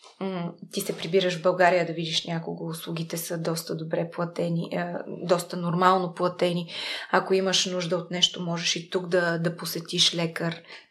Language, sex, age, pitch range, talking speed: Bulgarian, female, 20-39, 175-205 Hz, 155 wpm